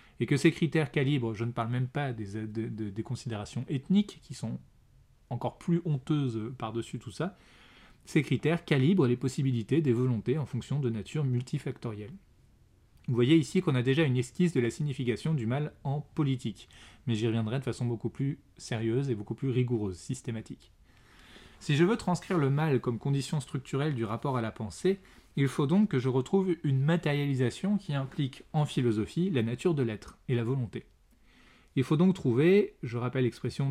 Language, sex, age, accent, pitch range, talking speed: French, male, 20-39, French, 120-155 Hz, 180 wpm